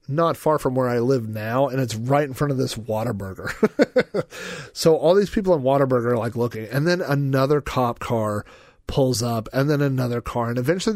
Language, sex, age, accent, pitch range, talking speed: English, male, 40-59, American, 120-145 Hz, 205 wpm